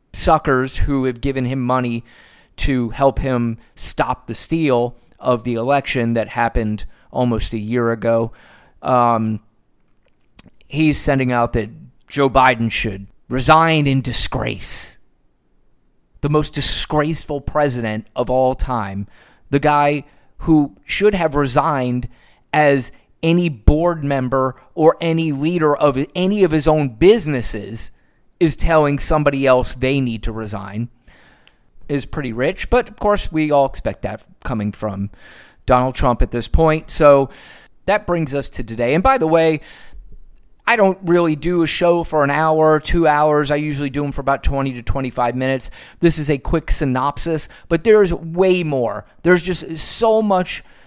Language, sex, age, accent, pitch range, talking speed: English, male, 30-49, American, 120-155 Hz, 150 wpm